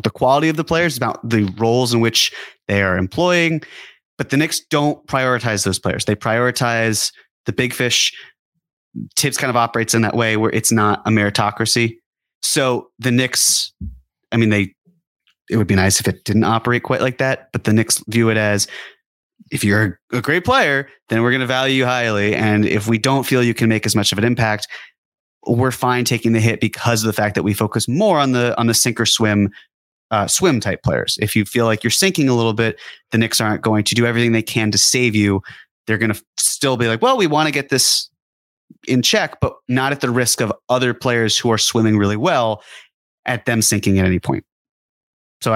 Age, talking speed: 30-49, 215 wpm